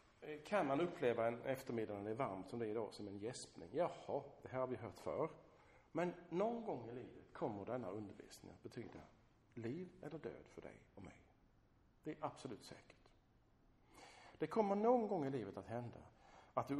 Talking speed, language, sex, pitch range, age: 195 wpm, Swedish, male, 105-145 Hz, 50-69